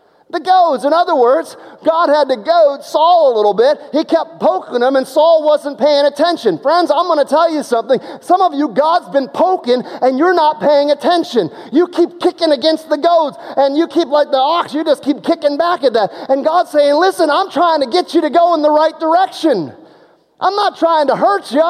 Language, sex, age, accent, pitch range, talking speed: English, male, 30-49, American, 245-345 Hz, 220 wpm